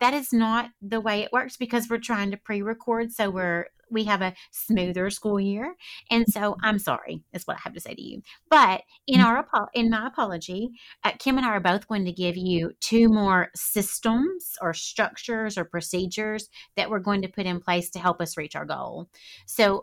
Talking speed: 210 wpm